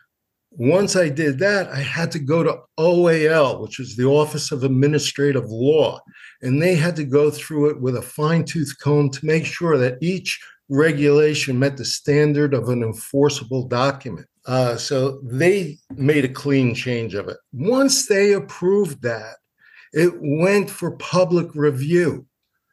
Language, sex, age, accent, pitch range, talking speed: English, male, 50-69, American, 130-170 Hz, 160 wpm